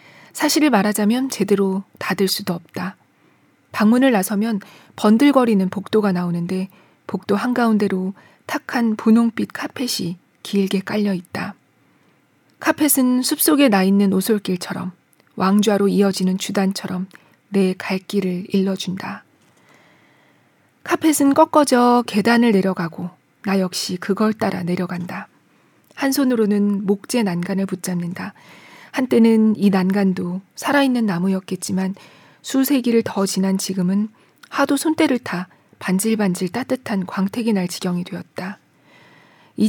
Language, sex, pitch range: Korean, female, 190-235 Hz